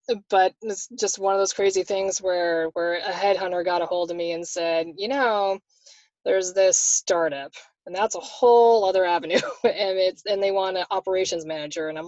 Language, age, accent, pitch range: English, 20-39, American, 165-200 Hz